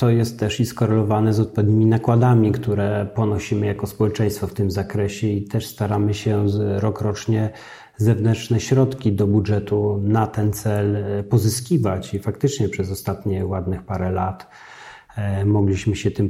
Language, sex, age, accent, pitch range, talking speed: Polish, male, 40-59, native, 100-115 Hz, 145 wpm